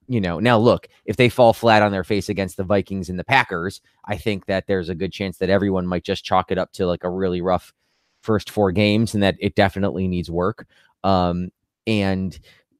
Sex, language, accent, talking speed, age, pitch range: male, English, American, 220 wpm, 20-39, 90-110 Hz